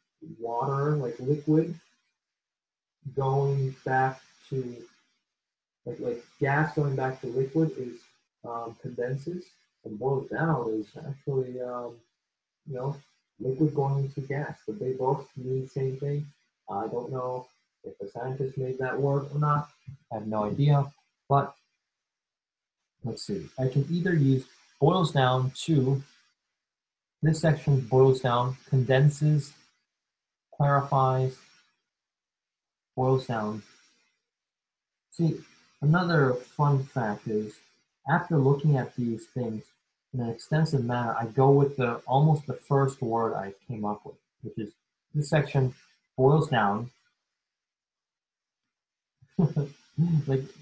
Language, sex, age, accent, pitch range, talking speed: English, male, 30-49, American, 120-145 Hz, 120 wpm